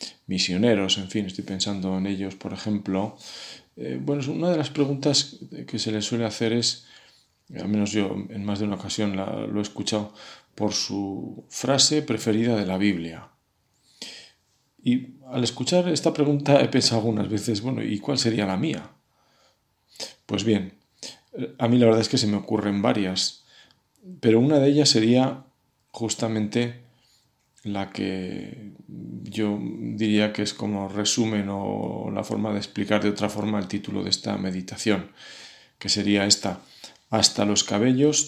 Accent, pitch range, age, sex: Spanish, 100-120 Hz, 40-59, male